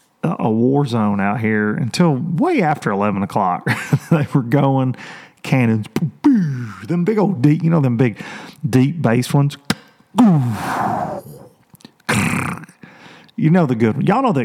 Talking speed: 135 wpm